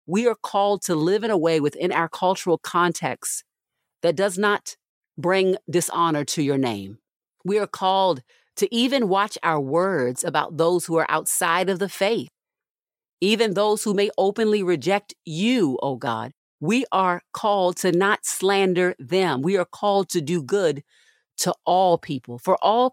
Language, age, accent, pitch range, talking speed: English, 40-59, American, 150-200 Hz, 165 wpm